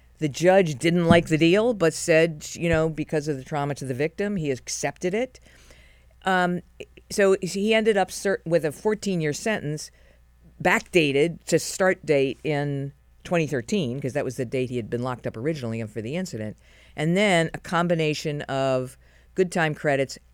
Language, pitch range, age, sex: English, 140-180 Hz, 50-69, female